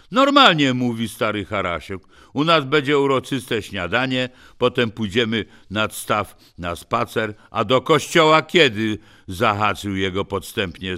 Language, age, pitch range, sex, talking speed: Polish, 60-79, 100-155 Hz, male, 120 wpm